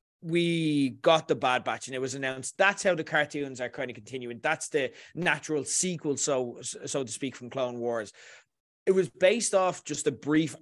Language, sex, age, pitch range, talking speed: English, male, 20-39, 135-180 Hz, 200 wpm